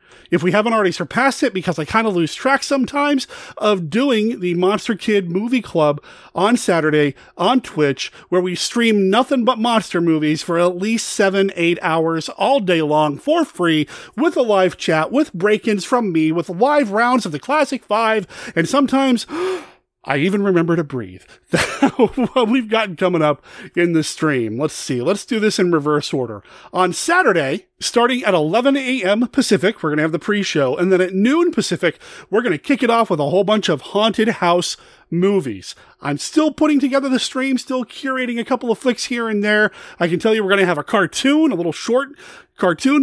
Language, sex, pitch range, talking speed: English, male, 175-250 Hz, 195 wpm